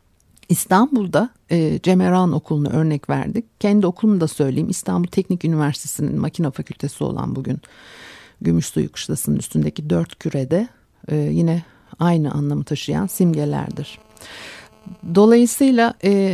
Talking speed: 115 wpm